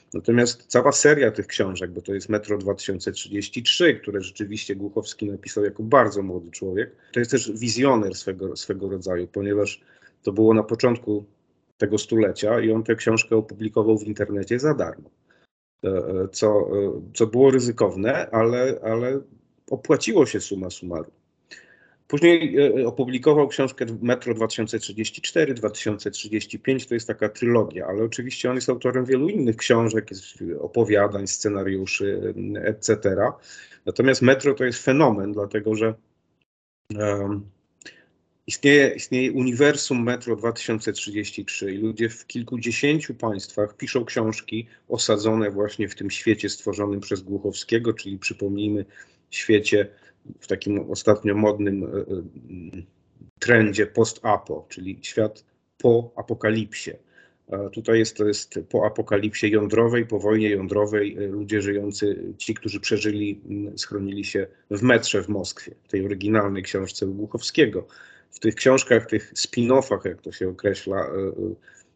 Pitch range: 100-120 Hz